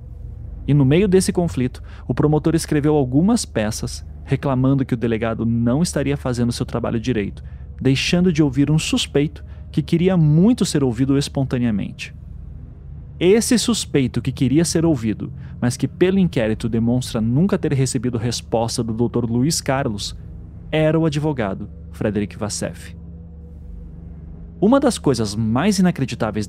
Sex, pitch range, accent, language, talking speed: male, 110-160 Hz, Brazilian, Portuguese, 135 wpm